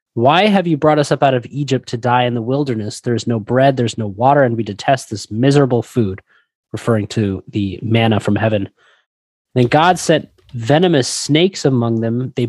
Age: 20-39